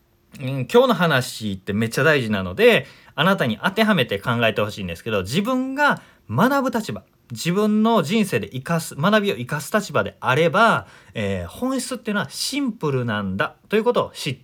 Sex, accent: male, native